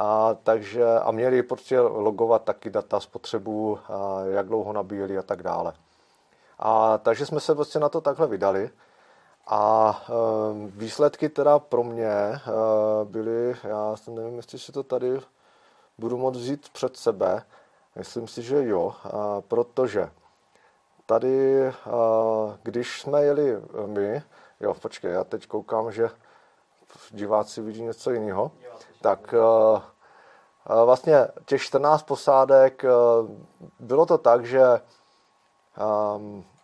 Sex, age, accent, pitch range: male, 30-49, native, 105-125 Hz